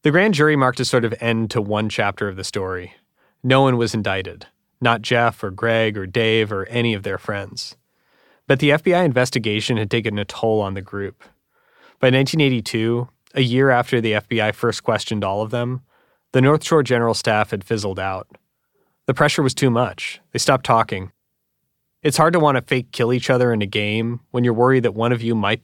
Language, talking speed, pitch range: English, 205 wpm, 105-130 Hz